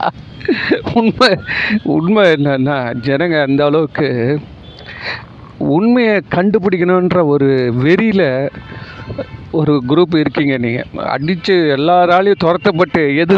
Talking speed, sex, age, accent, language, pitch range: 80 wpm, male, 50-69, native, Tamil, 140-185 Hz